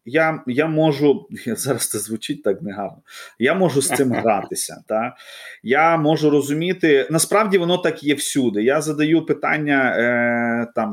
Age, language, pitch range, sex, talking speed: 30-49, Ukrainian, 120-155 Hz, male, 150 wpm